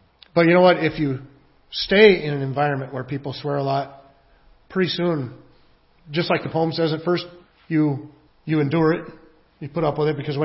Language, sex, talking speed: English, male, 200 wpm